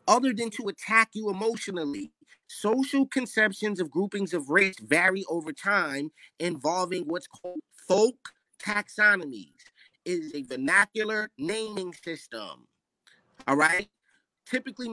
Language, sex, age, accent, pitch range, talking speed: English, male, 30-49, American, 165-225 Hz, 115 wpm